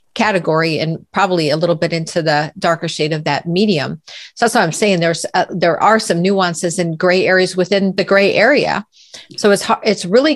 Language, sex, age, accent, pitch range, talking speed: English, female, 40-59, American, 170-190 Hz, 195 wpm